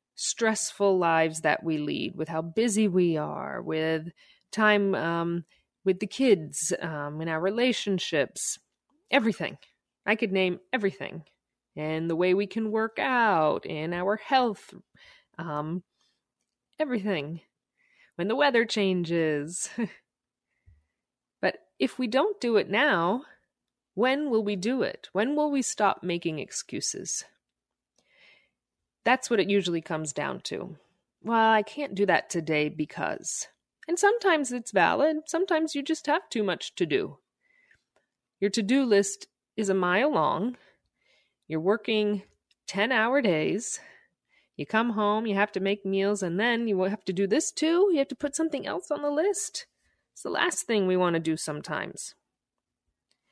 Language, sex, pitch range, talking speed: English, female, 175-255 Hz, 145 wpm